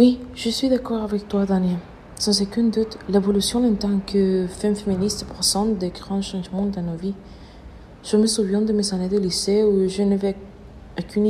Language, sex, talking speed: French, female, 185 wpm